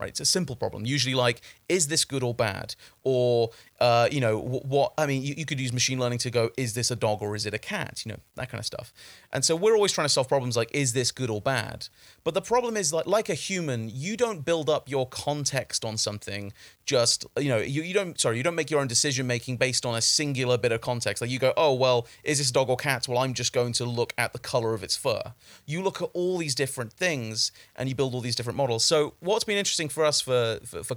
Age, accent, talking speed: 30-49, British, 260 wpm